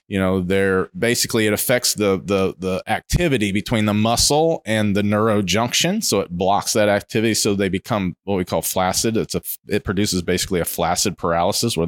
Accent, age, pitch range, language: American, 30-49, 95-115 Hz, English